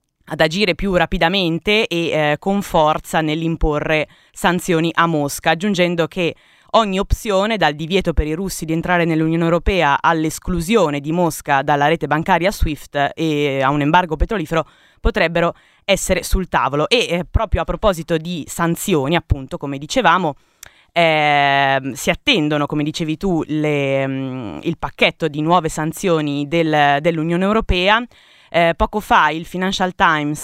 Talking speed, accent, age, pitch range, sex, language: 140 wpm, native, 20-39, 150-180 Hz, female, Italian